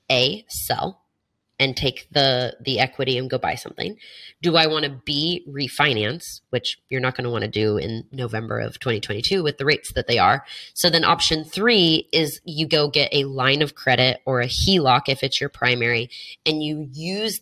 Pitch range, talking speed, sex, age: 125-155 Hz, 195 wpm, female, 20-39